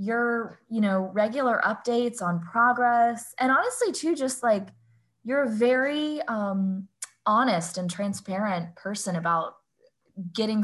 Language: English